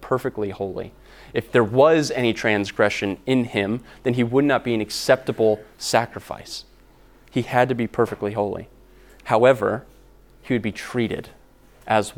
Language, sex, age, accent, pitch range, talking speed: English, male, 20-39, American, 100-120 Hz, 145 wpm